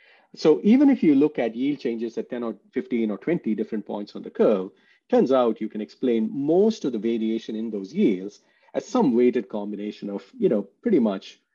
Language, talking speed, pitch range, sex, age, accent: English, 210 wpm, 105-130 Hz, male, 40-59, Indian